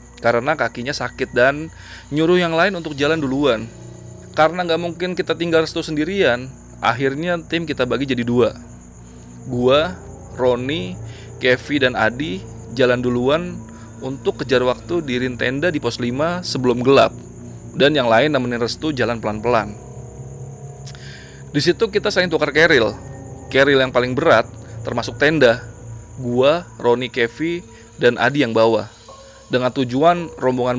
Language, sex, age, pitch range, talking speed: Indonesian, male, 20-39, 110-140 Hz, 135 wpm